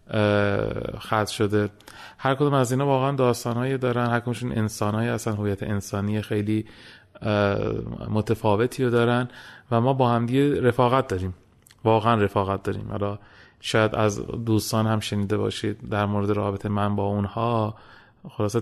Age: 30-49